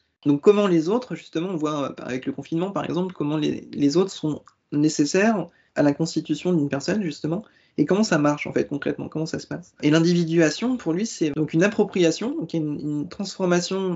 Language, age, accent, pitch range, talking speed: French, 20-39, French, 145-180 Hz, 200 wpm